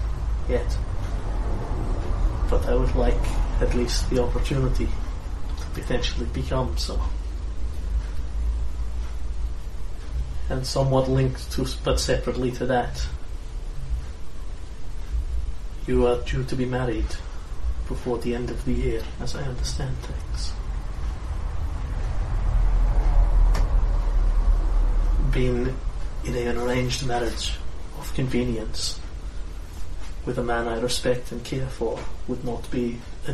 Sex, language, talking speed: male, English, 100 wpm